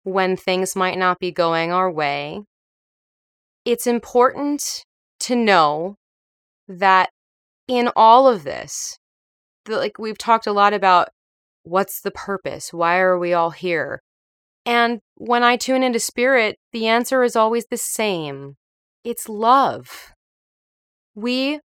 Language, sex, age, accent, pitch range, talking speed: English, female, 30-49, American, 180-225 Hz, 125 wpm